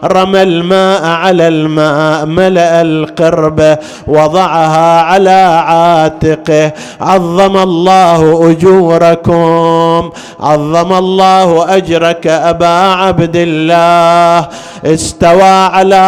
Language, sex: Arabic, male